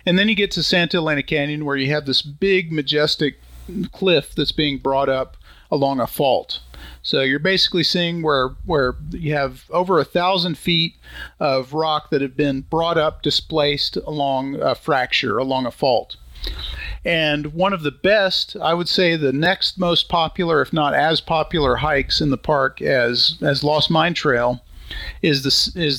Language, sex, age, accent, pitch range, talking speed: English, male, 40-59, American, 140-170 Hz, 170 wpm